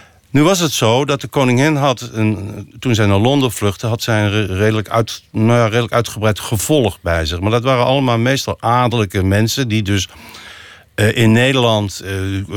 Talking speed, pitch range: 180 wpm, 105-145 Hz